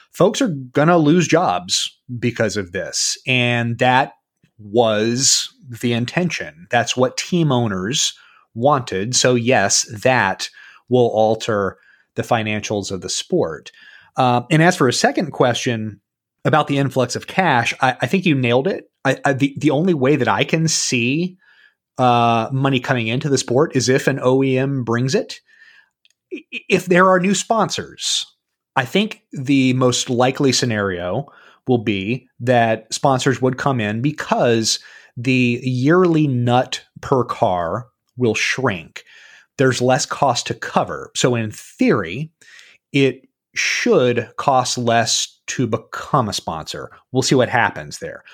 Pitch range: 120-155 Hz